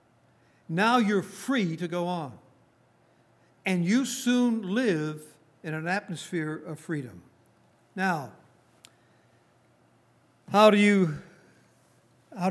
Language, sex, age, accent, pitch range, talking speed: English, male, 60-79, American, 155-195 Hz, 95 wpm